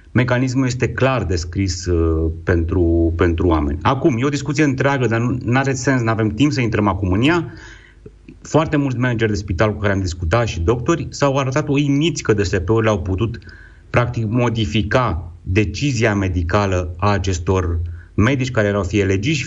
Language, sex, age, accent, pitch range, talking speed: Romanian, male, 30-49, native, 90-130 Hz, 170 wpm